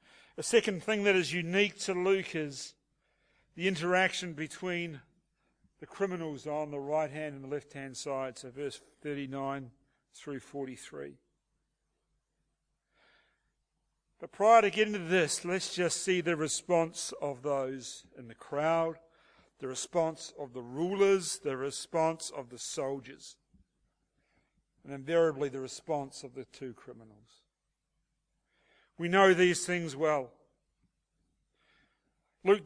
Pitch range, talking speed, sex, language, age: 140-185 Hz, 125 wpm, male, English, 50-69